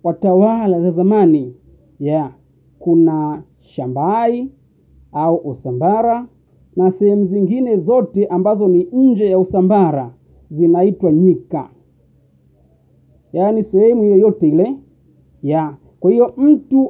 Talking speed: 105 wpm